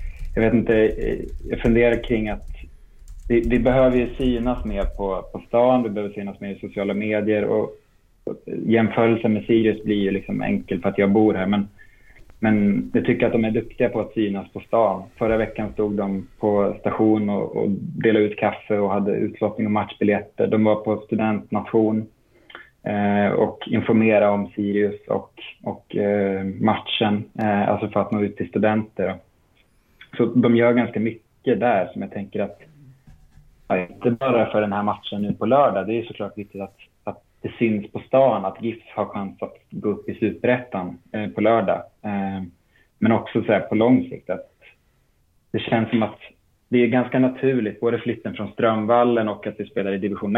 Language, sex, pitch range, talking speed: Swedish, male, 100-115 Hz, 185 wpm